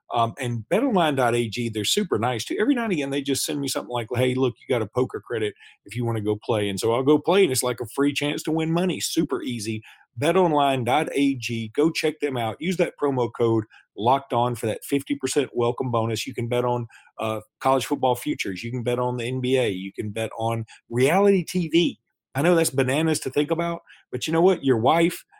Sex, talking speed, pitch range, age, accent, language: male, 225 wpm, 110-145 Hz, 40-59, American, English